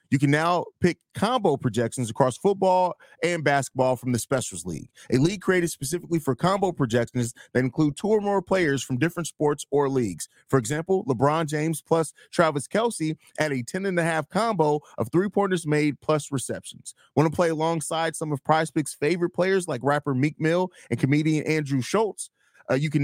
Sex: male